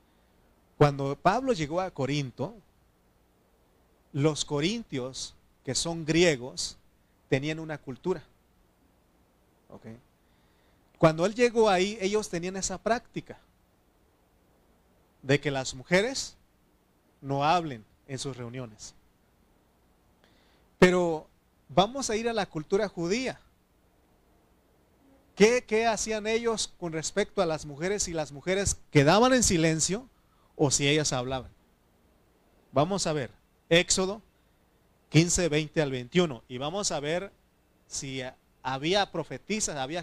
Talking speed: 110 wpm